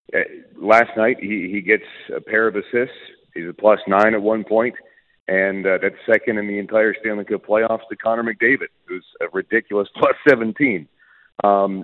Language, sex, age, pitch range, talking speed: English, male, 40-59, 100-125 Hz, 180 wpm